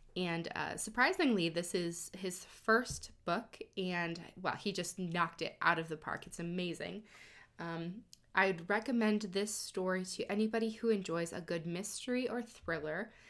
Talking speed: 155 wpm